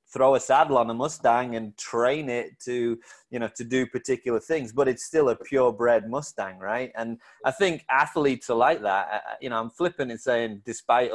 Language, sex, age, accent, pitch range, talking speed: English, male, 30-49, British, 110-135 Hz, 200 wpm